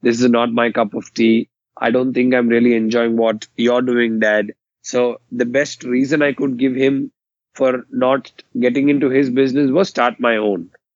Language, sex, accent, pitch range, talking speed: English, male, Indian, 120-135 Hz, 190 wpm